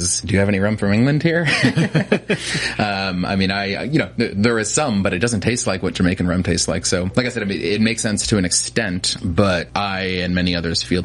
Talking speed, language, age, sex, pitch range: 235 wpm, English, 30-49, male, 85-100 Hz